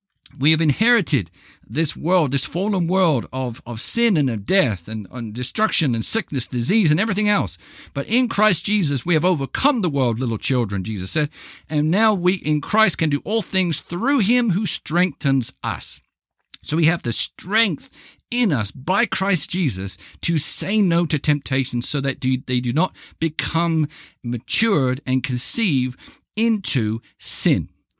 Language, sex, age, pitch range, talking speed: English, male, 50-69, 130-195 Hz, 165 wpm